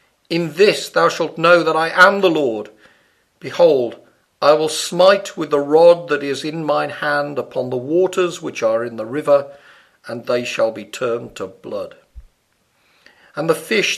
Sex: male